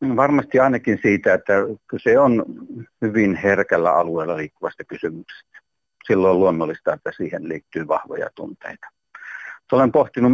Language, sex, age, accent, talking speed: Finnish, male, 60-79, native, 120 wpm